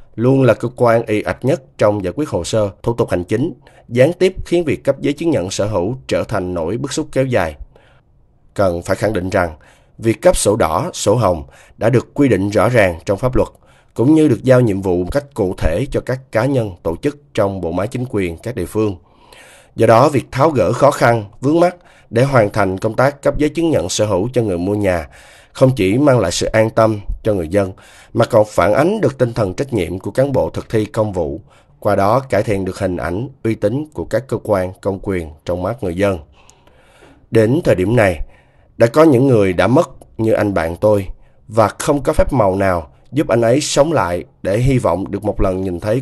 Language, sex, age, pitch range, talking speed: Vietnamese, male, 20-39, 95-130 Hz, 235 wpm